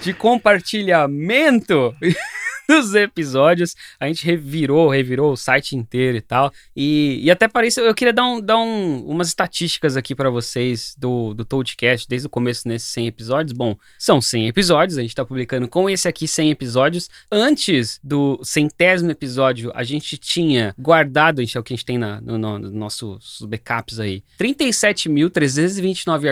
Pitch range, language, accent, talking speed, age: 125-200 Hz, Portuguese, Brazilian, 165 wpm, 20-39